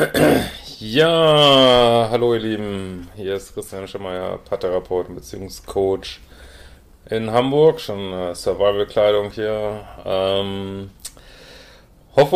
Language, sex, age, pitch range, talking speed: German, male, 30-49, 100-125 Hz, 85 wpm